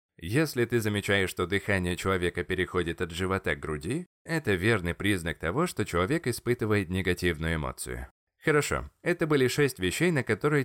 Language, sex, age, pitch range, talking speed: Russian, male, 20-39, 90-140 Hz, 150 wpm